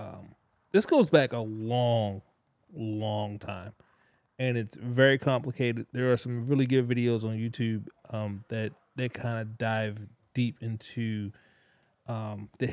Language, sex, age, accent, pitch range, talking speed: English, male, 30-49, American, 110-130 Hz, 140 wpm